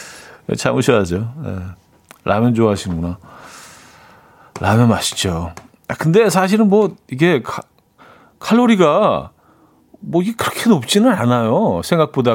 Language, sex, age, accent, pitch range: Korean, male, 40-59, native, 105-160 Hz